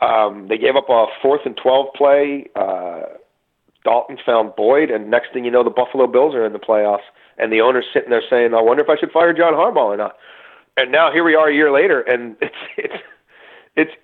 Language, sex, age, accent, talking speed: English, male, 40-59, American, 225 wpm